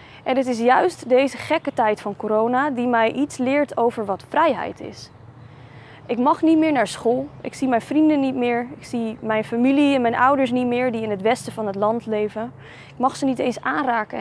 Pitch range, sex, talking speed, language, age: 220-265 Hz, female, 220 wpm, Dutch, 20-39